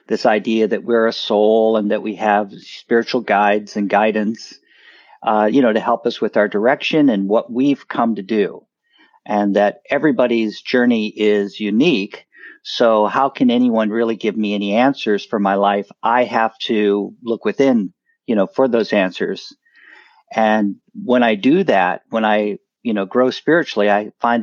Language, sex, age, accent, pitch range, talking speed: English, male, 50-69, American, 105-135 Hz, 170 wpm